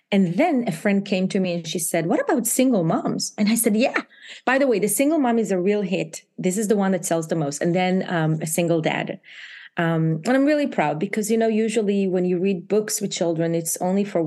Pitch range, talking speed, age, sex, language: 165-205 Hz, 250 wpm, 30-49, female, English